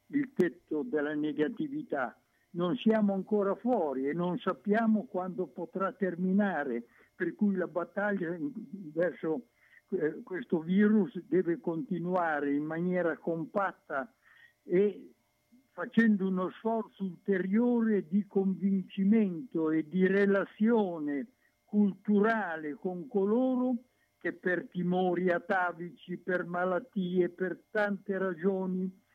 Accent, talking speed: native, 100 wpm